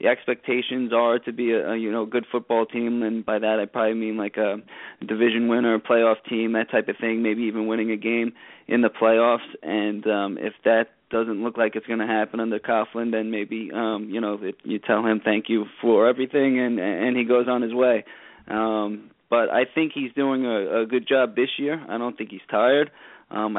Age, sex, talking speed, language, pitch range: 20-39, male, 225 wpm, English, 110-125 Hz